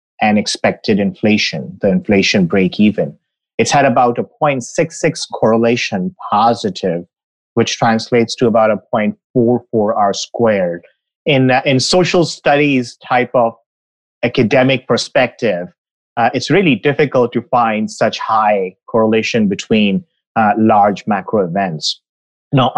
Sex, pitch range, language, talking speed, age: male, 105-145 Hz, English, 120 wpm, 30-49